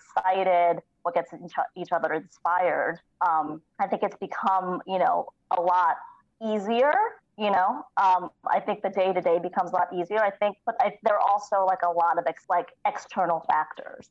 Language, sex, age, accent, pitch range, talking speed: English, female, 30-49, American, 175-205 Hz, 180 wpm